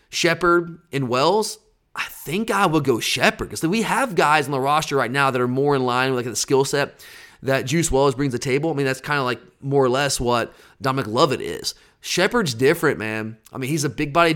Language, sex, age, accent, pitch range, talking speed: English, male, 30-49, American, 140-175 Hz, 240 wpm